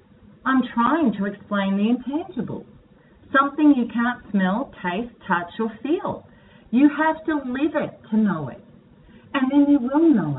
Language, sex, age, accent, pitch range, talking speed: English, female, 40-59, Australian, 190-235 Hz, 155 wpm